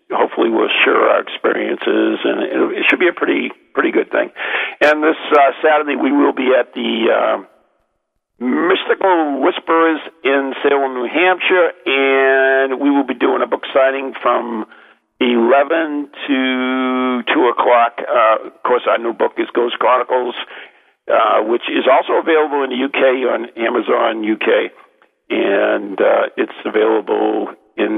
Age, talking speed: 50-69, 145 wpm